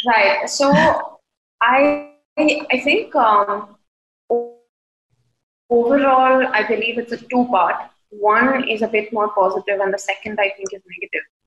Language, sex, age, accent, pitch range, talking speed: English, female, 20-39, Indian, 190-225 Hz, 130 wpm